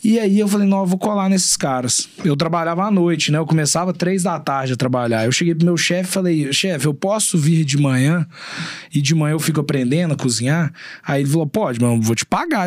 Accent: Brazilian